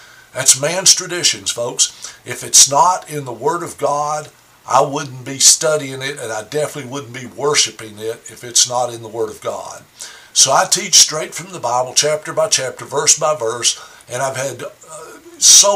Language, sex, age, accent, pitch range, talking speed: English, male, 60-79, American, 130-155 Hz, 190 wpm